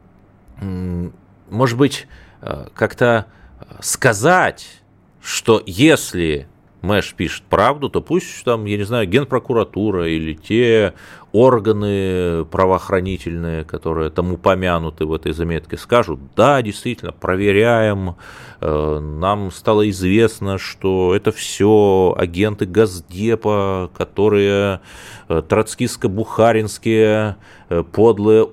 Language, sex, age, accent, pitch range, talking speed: Russian, male, 30-49, native, 90-115 Hz, 85 wpm